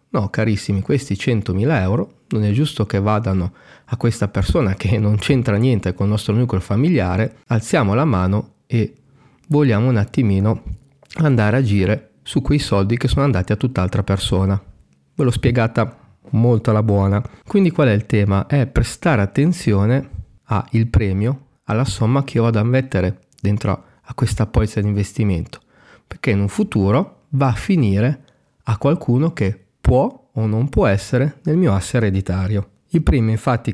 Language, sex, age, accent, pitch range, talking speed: Italian, male, 40-59, native, 100-130 Hz, 160 wpm